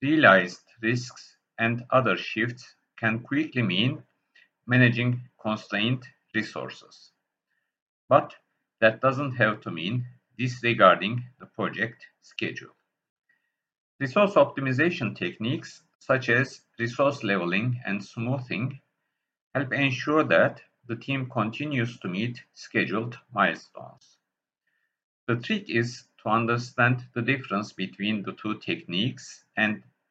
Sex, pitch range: male, 110-130 Hz